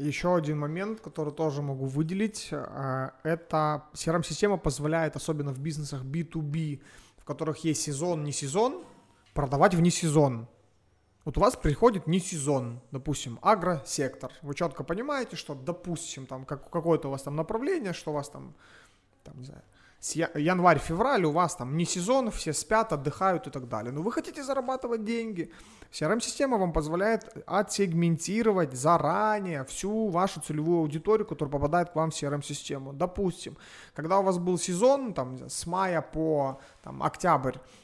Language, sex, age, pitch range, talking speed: Russian, male, 30-49, 145-190 Hz, 145 wpm